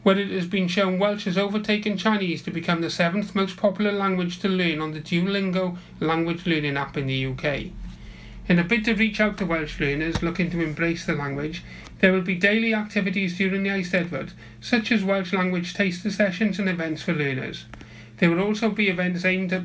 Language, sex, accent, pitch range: Japanese, male, British, 160-205 Hz